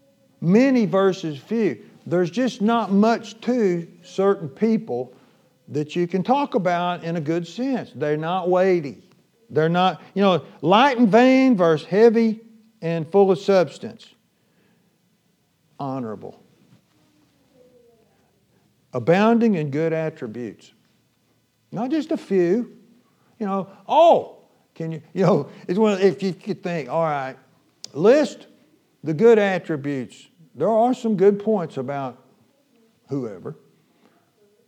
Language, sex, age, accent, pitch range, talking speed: English, male, 50-69, American, 155-225 Hz, 120 wpm